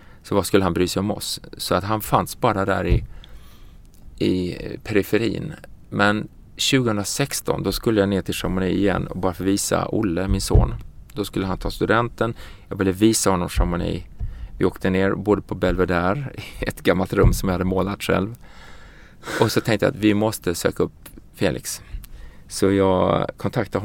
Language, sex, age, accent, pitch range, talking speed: English, male, 30-49, Norwegian, 95-115 Hz, 175 wpm